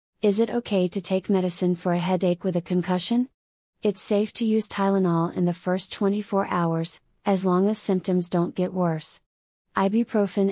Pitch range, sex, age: 180-205 Hz, female, 30-49